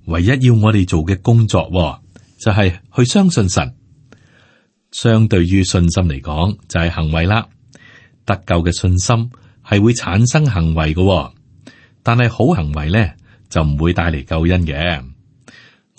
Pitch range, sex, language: 85-115 Hz, male, Chinese